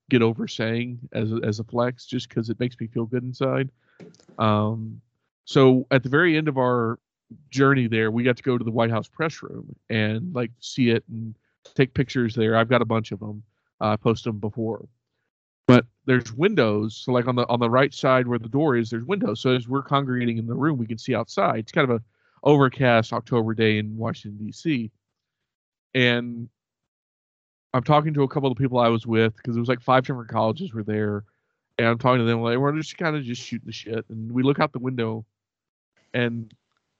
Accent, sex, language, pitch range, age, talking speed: American, male, English, 115-135 Hz, 40-59, 220 wpm